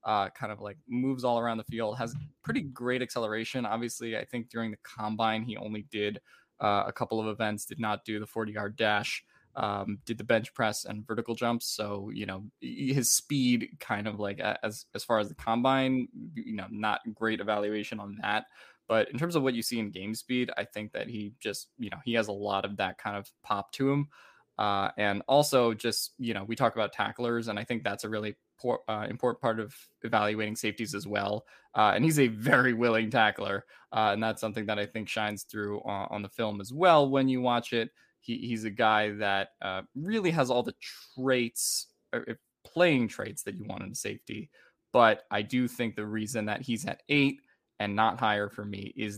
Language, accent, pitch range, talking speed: English, American, 105-120 Hz, 215 wpm